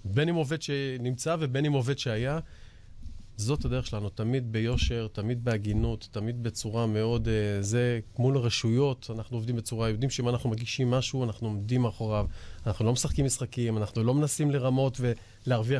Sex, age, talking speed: male, 30-49, 155 wpm